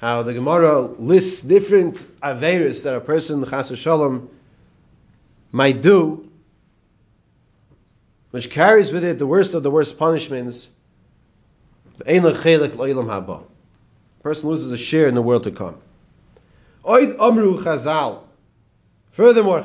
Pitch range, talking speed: 135-185 Hz, 100 wpm